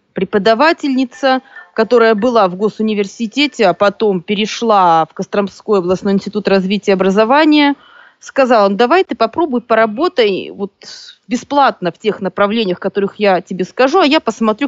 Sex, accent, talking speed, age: female, native, 135 wpm, 20-39